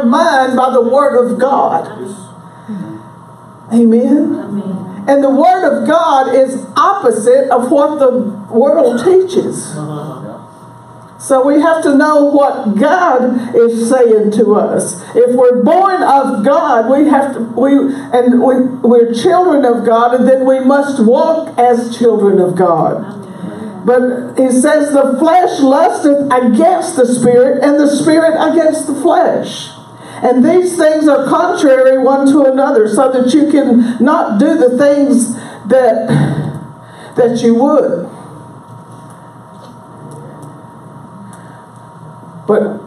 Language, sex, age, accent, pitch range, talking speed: Portuguese, female, 60-79, American, 230-290 Hz, 125 wpm